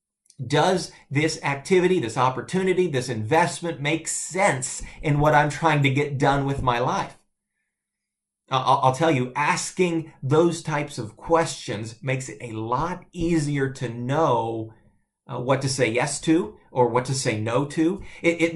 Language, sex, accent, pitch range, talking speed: English, male, American, 125-160 Hz, 150 wpm